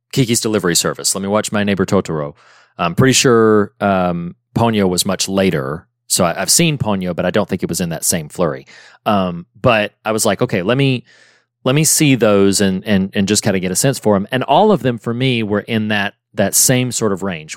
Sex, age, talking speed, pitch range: male, 30-49, 235 wpm, 95-125 Hz